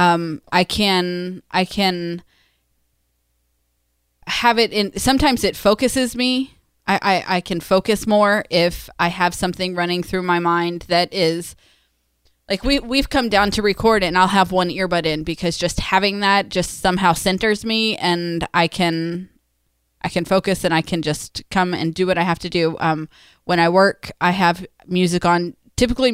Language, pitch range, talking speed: English, 155-190 Hz, 170 wpm